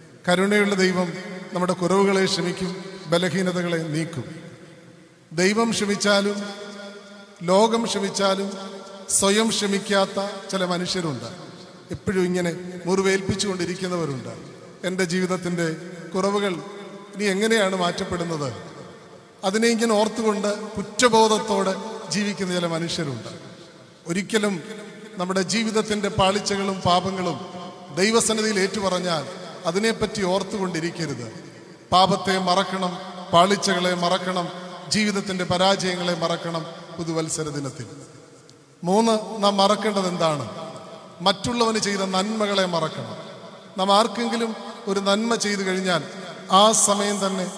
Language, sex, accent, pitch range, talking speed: Malayalam, male, native, 175-205 Hz, 85 wpm